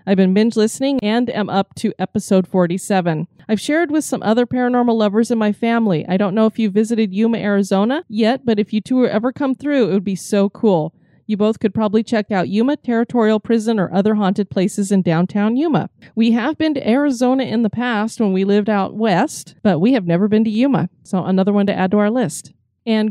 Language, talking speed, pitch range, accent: English, 225 wpm, 195-240 Hz, American